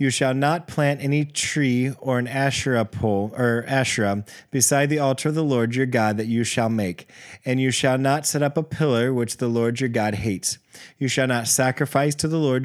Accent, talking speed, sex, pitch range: American, 215 wpm, male, 115-140 Hz